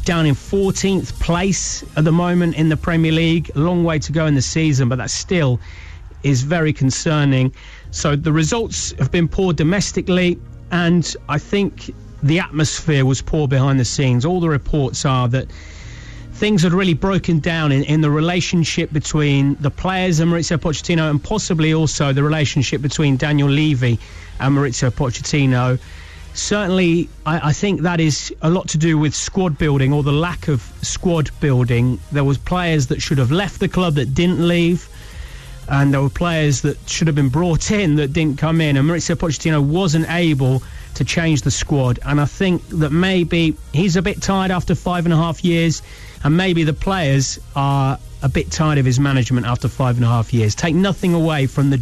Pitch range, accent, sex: 135-170 Hz, British, male